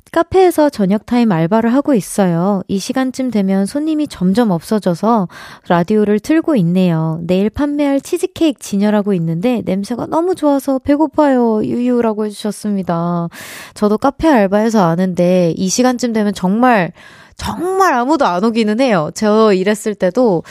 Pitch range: 190-270 Hz